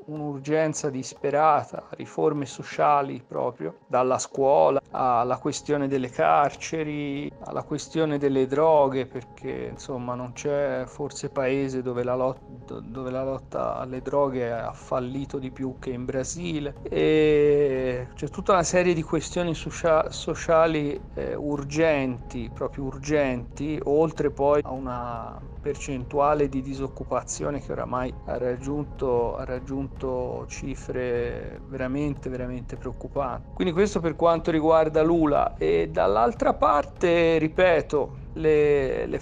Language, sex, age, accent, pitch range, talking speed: Italian, male, 40-59, native, 130-160 Hz, 120 wpm